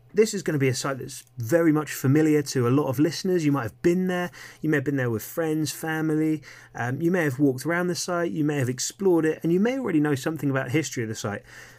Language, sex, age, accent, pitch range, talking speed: English, male, 30-49, British, 110-140 Hz, 275 wpm